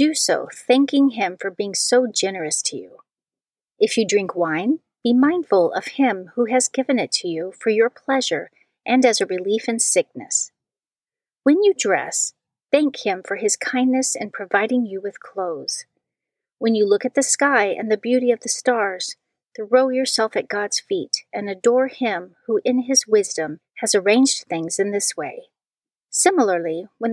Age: 40-59